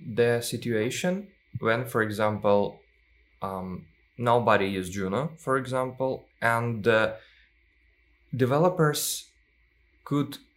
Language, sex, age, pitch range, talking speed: English, male, 20-39, 95-130 Hz, 85 wpm